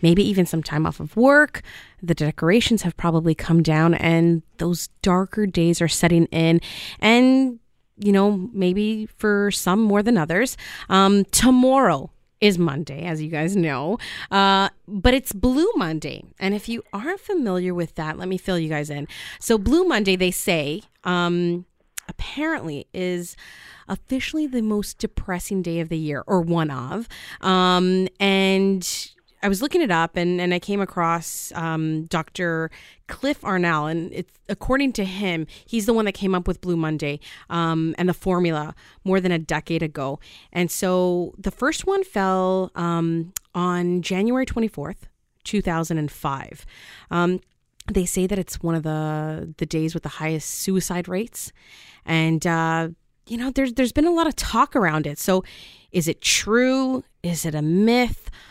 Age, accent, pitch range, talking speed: 30-49, American, 165-205 Hz, 165 wpm